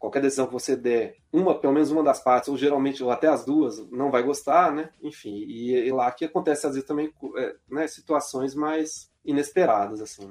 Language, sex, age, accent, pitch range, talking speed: Portuguese, male, 20-39, Brazilian, 115-150 Hz, 210 wpm